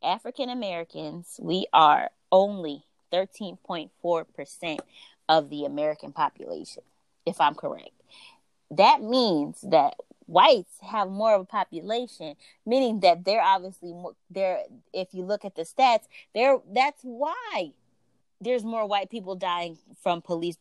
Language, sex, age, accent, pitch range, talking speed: English, female, 20-39, American, 170-235 Hz, 115 wpm